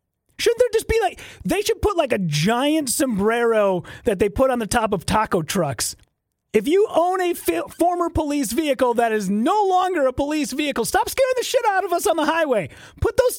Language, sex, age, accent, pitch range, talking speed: English, male, 30-49, American, 250-390 Hz, 210 wpm